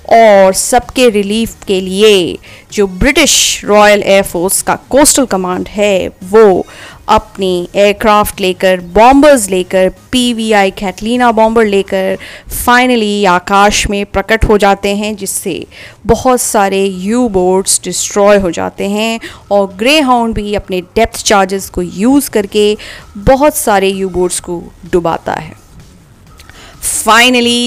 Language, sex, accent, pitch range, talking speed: Hindi, female, native, 190-225 Hz, 125 wpm